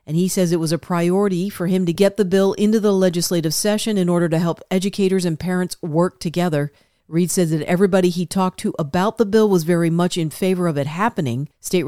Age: 50-69